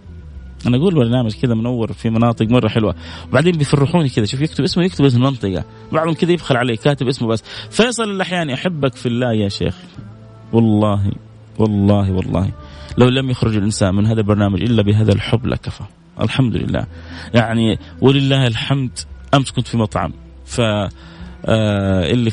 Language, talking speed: Arabic, 155 wpm